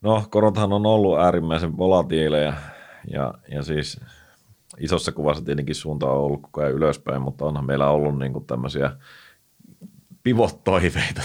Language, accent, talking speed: Finnish, native, 135 wpm